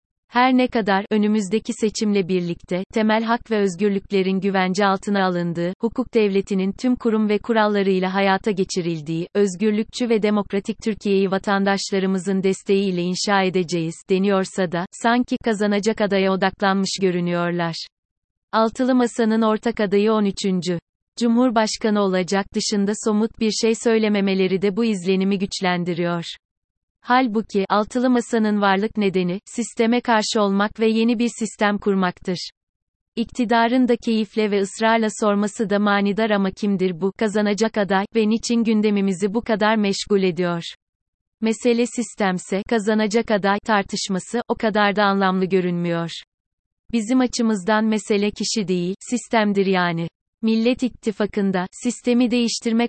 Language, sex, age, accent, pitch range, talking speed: Turkish, female, 30-49, native, 190-225 Hz, 120 wpm